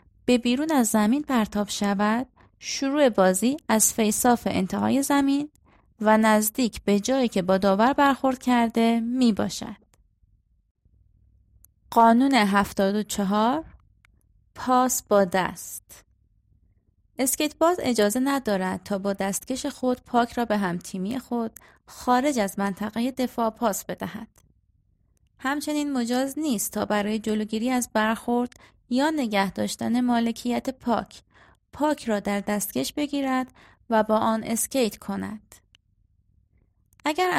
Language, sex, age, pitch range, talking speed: Persian, female, 20-39, 195-255 Hz, 115 wpm